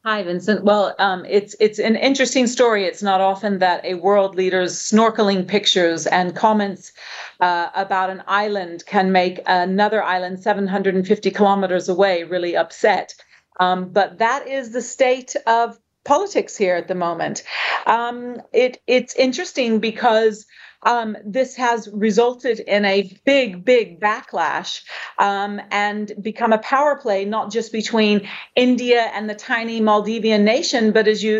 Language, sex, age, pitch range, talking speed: English, female, 40-59, 195-235 Hz, 145 wpm